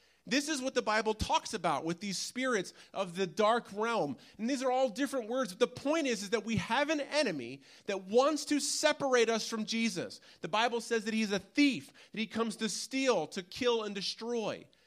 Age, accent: 30-49, American